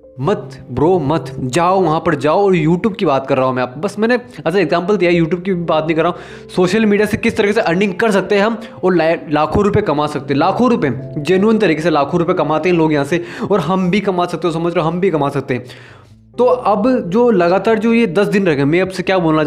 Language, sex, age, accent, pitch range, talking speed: Hindi, male, 20-39, native, 155-195 Hz, 260 wpm